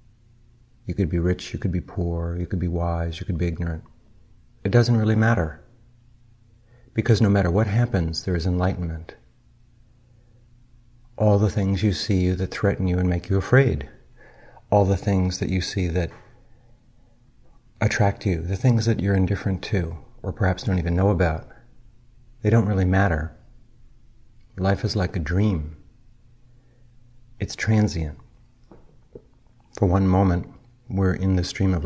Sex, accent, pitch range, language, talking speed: male, American, 90-120 Hz, English, 150 wpm